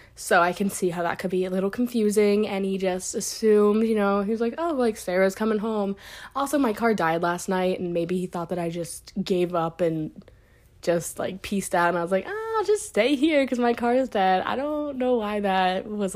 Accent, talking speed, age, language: American, 240 wpm, 20-39, English